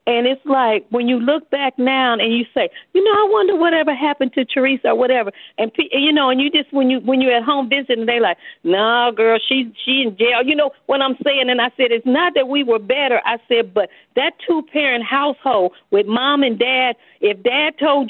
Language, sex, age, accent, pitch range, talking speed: English, female, 40-59, American, 235-290 Hz, 235 wpm